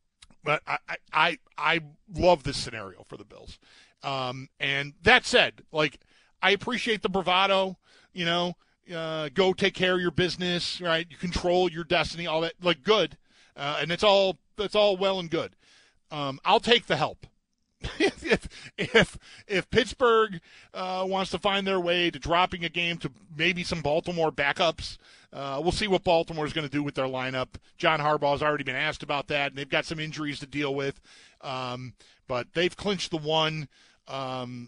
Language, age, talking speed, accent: English, 40-59, 180 wpm, American